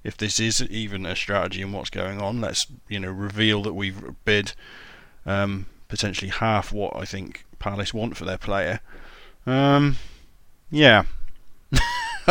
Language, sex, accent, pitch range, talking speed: English, male, British, 100-135 Hz, 150 wpm